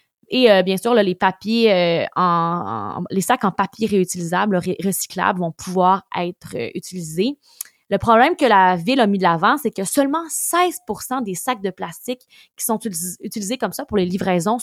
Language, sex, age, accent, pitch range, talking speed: French, female, 20-39, Canadian, 185-235 Hz, 190 wpm